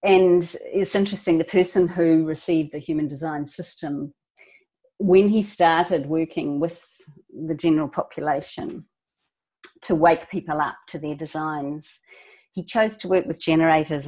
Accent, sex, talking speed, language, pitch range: Australian, female, 135 wpm, English, 150-185 Hz